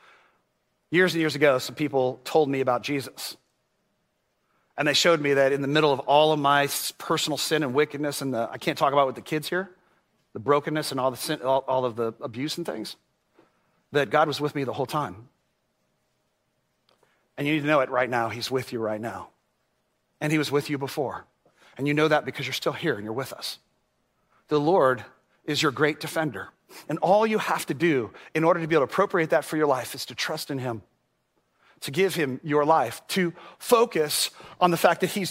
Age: 40-59